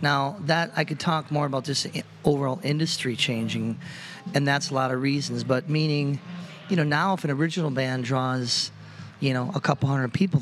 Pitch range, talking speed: 130-170 Hz, 190 wpm